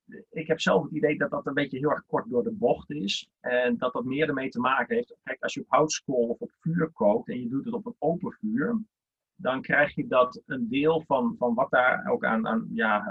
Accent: Dutch